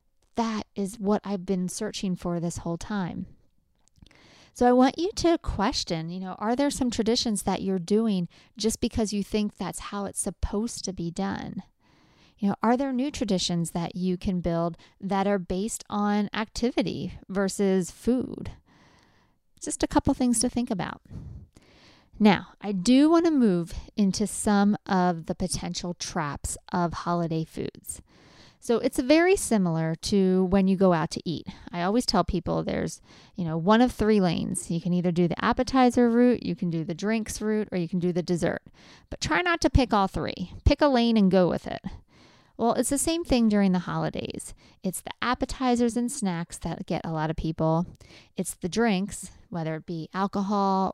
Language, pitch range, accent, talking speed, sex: English, 180-230 Hz, American, 185 wpm, female